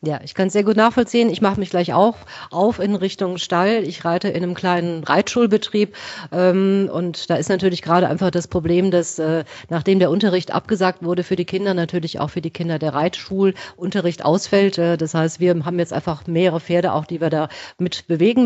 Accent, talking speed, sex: German, 210 wpm, female